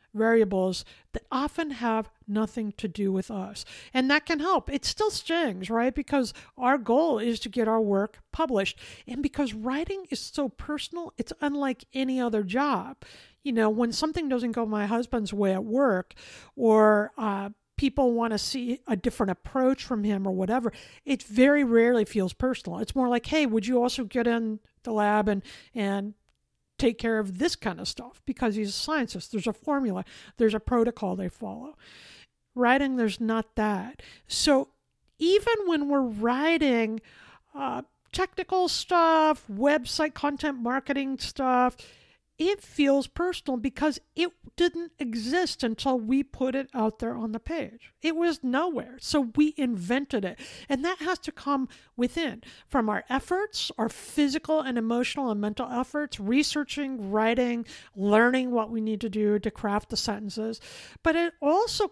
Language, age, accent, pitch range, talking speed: English, 50-69, American, 220-285 Hz, 165 wpm